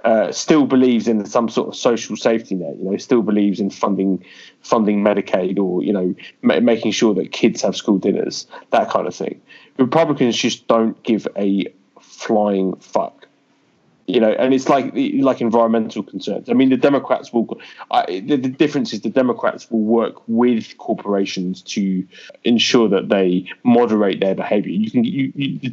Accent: British